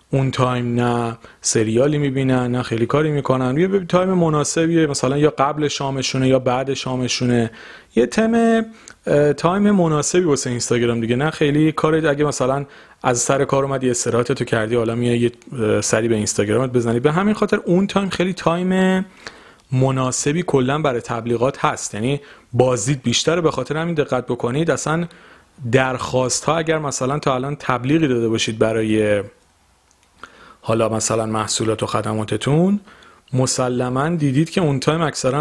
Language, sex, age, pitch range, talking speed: Persian, male, 40-59, 120-155 Hz, 150 wpm